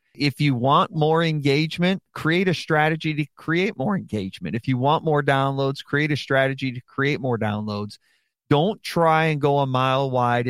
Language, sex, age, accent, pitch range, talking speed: English, male, 40-59, American, 125-155 Hz, 175 wpm